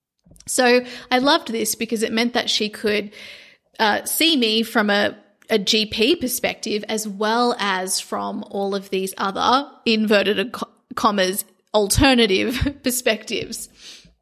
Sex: female